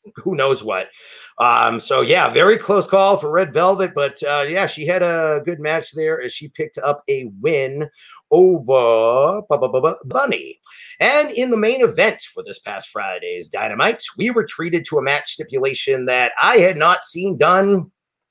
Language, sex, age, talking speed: English, male, 40-59, 175 wpm